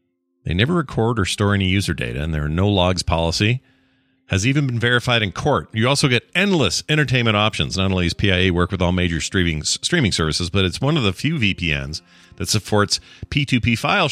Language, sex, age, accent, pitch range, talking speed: English, male, 40-59, American, 85-115 Hz, 200 wpm